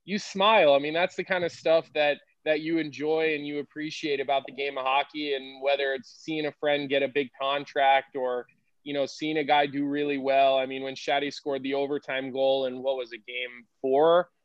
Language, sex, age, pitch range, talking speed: English, male, 20-39, 135-160 Hz, 225 wpm